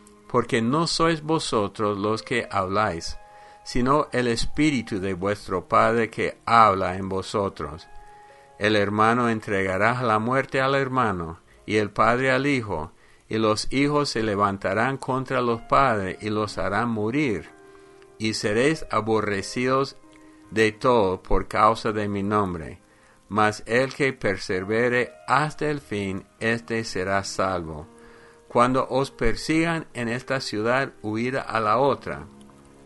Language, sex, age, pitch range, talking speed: English, male, 50-69, 100-130 Hz, 130 wpm